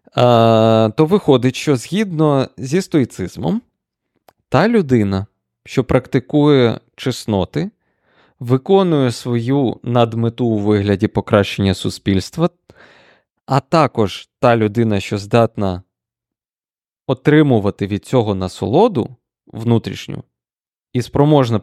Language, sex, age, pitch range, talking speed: Ukrainian, male, 20-39, 105-145 Hz, 90 wpm